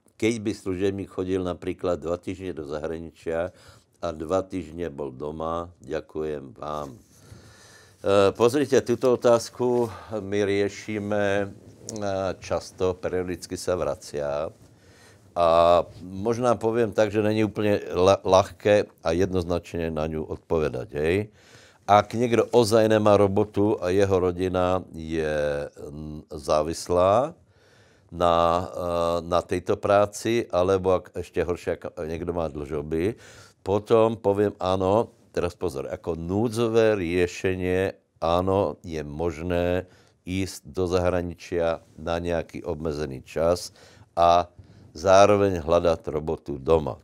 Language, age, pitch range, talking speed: Slovak, 60-79, 85-105 Hz, 110 wpm